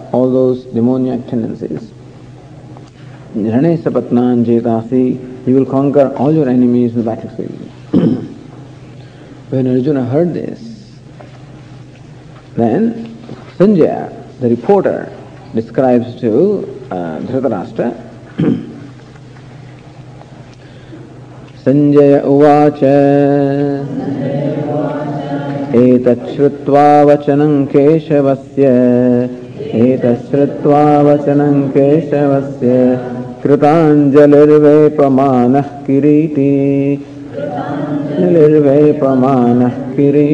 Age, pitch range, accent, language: 50-69, 130-145 Hz, Indian, English